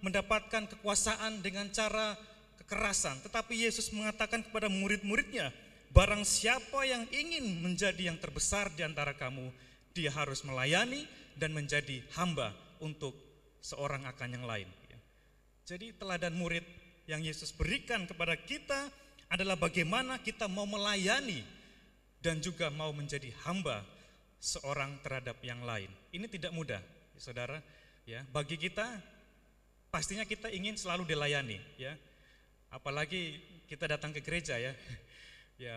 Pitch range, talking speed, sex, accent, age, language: 150-215 Hz, 120 wpm, male, native, 30-49, Indonesian